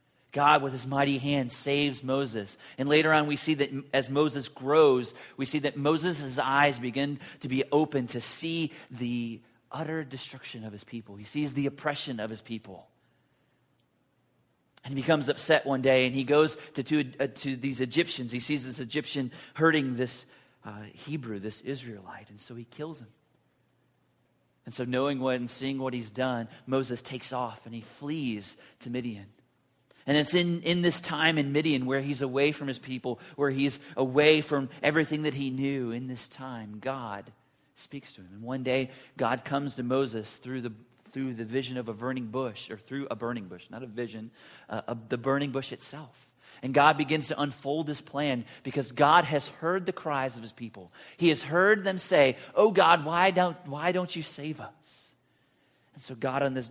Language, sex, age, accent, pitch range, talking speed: English, male, 30-49, American, 125-150 Hz, 190 wpm